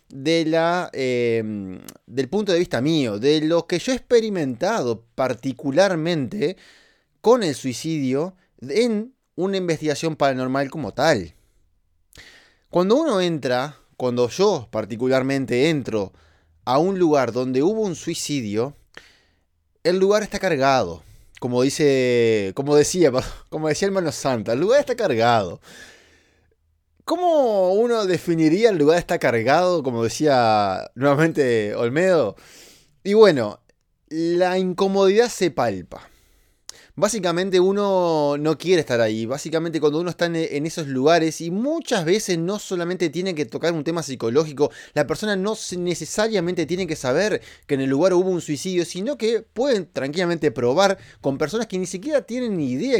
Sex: male